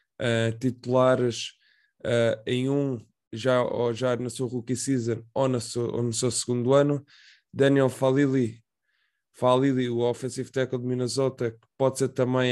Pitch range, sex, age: 115-130 Hz, male, 20-39